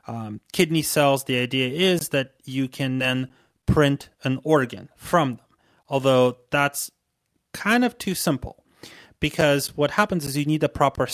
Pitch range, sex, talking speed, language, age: 125-150 Hz, male, 155 wpm, English, 30-49